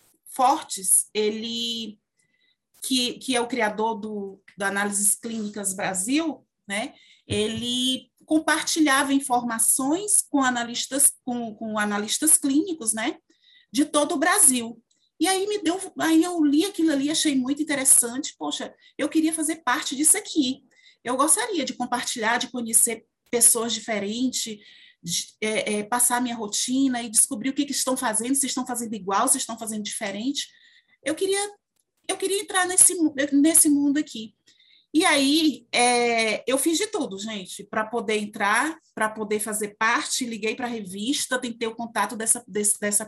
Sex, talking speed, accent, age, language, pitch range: female, 145 wpm, Brazilian, 30-49, Portuguese, 220-295 Hz